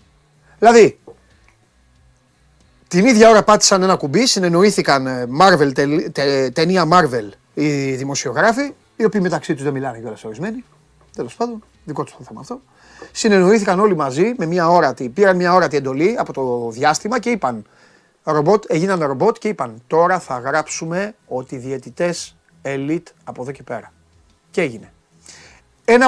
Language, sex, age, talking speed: Greek, male, 30-49, 145 wpm